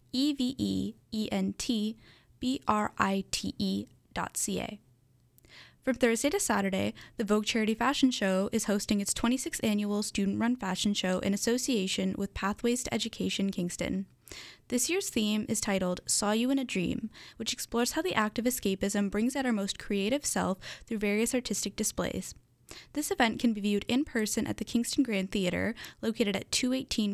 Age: 10-29